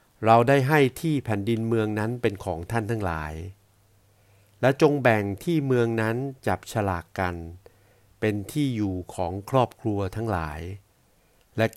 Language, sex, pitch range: Thai, male, 100-120 Hz